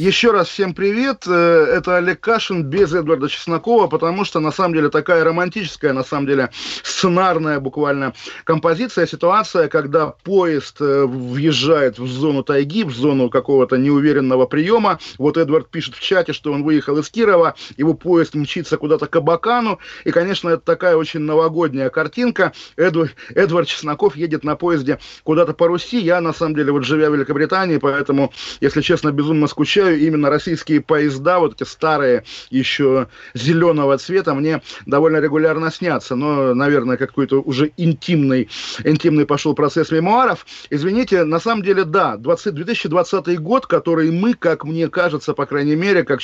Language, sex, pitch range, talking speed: Russian, male, 145-175 Hz, 155 wpm